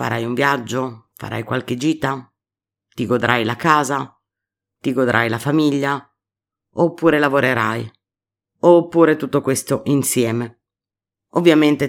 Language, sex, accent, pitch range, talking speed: Italian, female, native, 120-150 Hz, 105 wpm